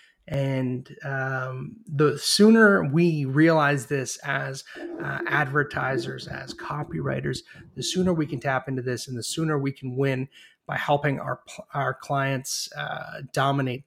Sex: male